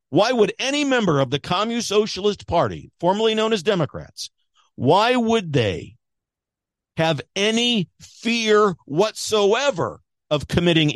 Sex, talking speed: male, 120 wpm